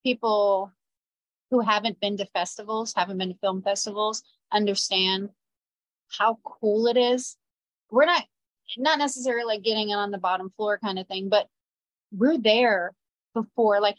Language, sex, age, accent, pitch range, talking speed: English, female, 30-49, American, 200-250 Hz, 150 wpm